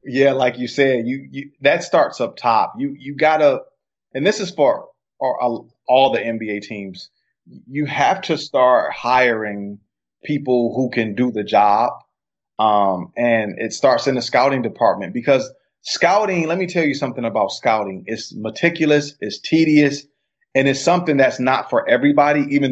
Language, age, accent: English, 30-49, American